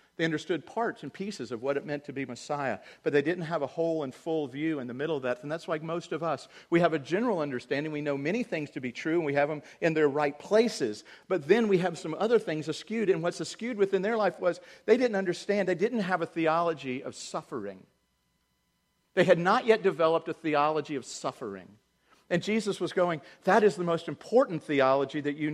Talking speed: 230 wpm